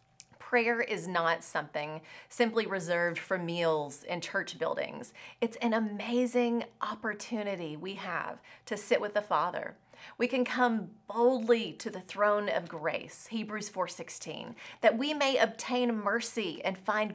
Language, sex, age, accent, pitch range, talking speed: English, female, 30-49, American, 190-235 Hz, 140 wpm